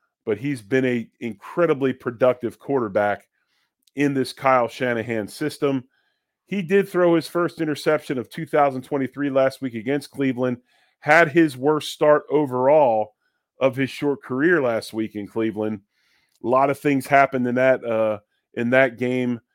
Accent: American